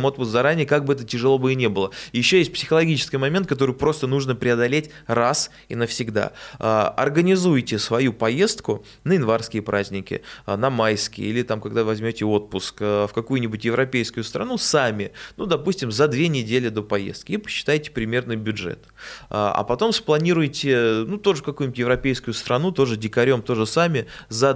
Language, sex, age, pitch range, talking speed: Russian, male, 20-39, 110-145 Hz, 155 wpm